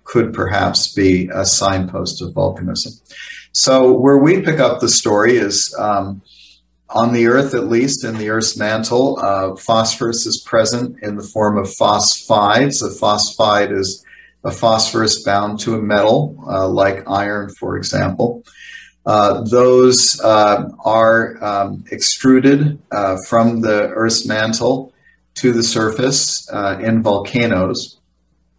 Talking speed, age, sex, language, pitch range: 135 wpm, 40-59, male, English, 105-120 Hz